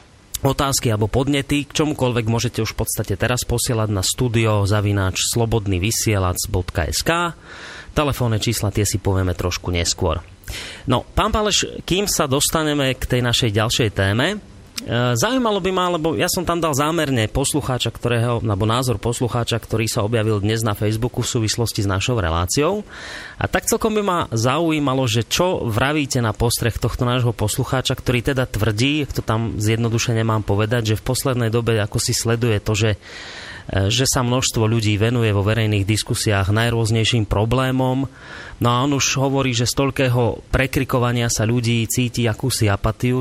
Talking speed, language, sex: 155 wpm, Slovak, male